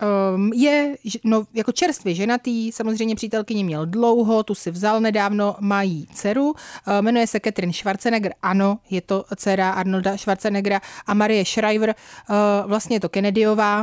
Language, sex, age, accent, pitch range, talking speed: Czech, female, 30-49, native, 195-230 Hz, 140 wpm